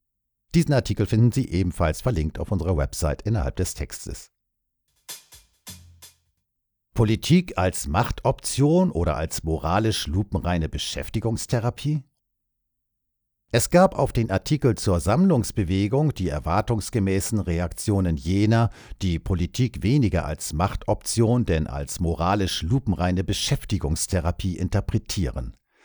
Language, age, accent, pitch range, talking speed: Dutch, 50-69, German, 85-115 Hz, 100 wpm